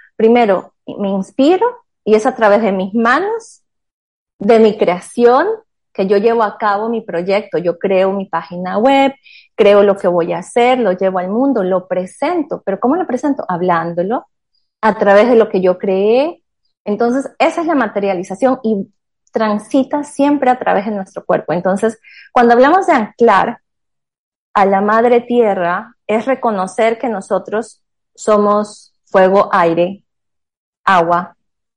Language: Spanish